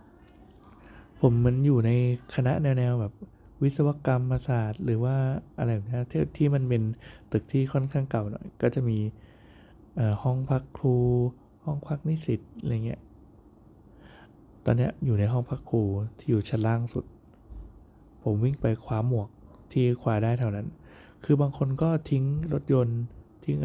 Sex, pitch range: male, 105-130 Hz